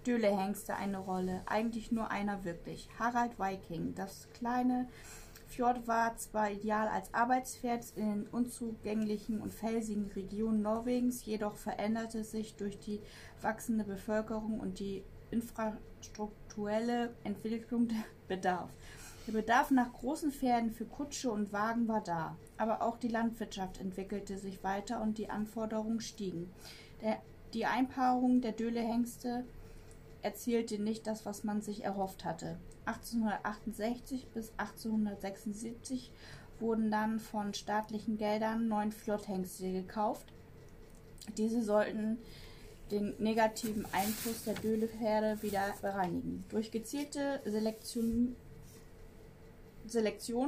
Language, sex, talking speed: German, female, 110 wpm